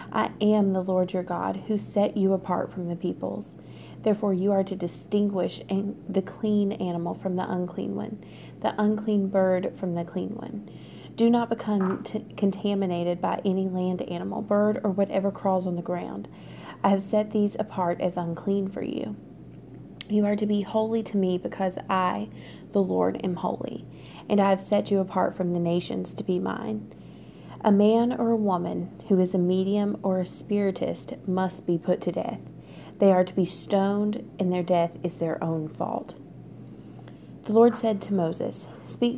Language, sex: English, female